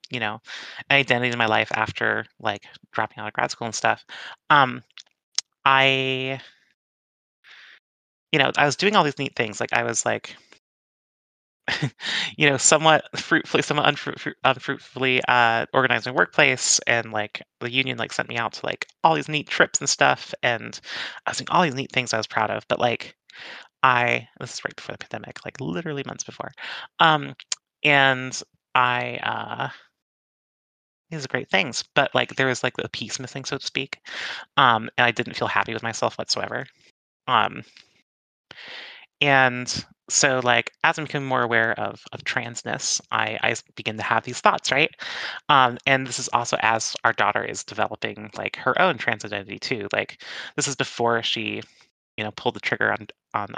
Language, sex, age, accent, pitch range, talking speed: English, male, 30-49, American, 110-135 Hz, 175 wpm